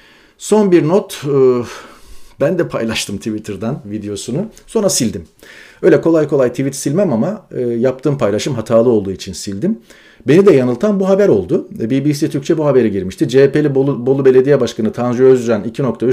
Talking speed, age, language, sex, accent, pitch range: 150 wpm, 40-59, Turkish, male, native, 110-140 Hz